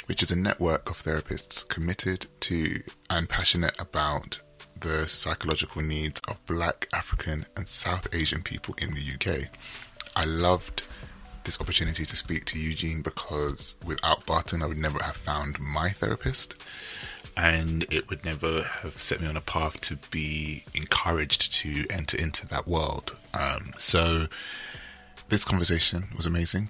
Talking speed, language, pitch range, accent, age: 150 wpm, English, 75-90 Hz, British, 20-39